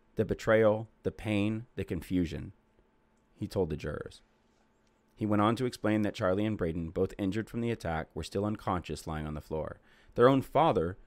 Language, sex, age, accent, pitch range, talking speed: English, male, 30-49, American, 90-120 Hz, 185 wpm